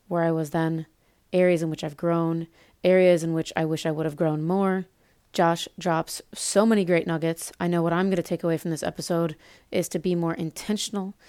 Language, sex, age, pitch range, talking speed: English, female, 30-49, 160-185 Hz, 220 wpm